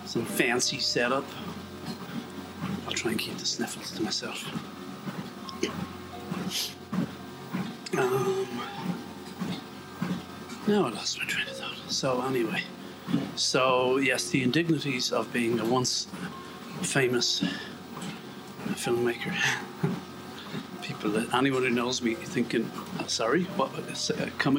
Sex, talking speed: male, 105 wpm